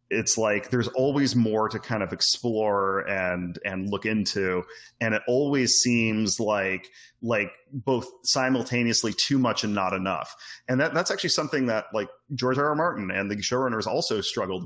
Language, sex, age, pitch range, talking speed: English, male, 30-49, 95-115 Hz, 170 wpm